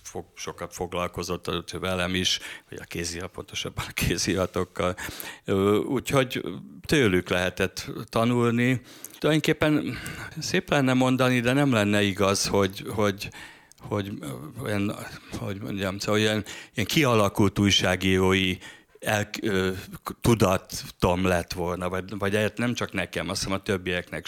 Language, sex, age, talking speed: Hungarian, male, 60-79, 115 wpm